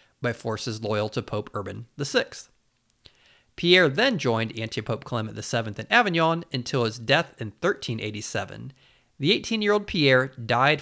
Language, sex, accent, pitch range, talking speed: English, male, American, 115-150 Hz, 135 wpm